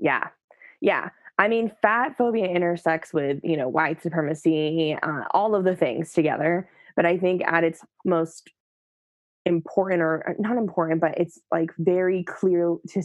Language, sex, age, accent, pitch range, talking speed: English, female, 20-39, American, 160-180 Hz, 155 wpm